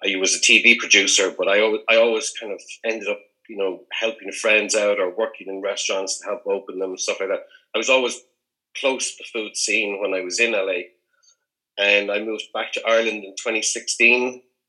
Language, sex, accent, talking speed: English, male, Irish, 215 wpm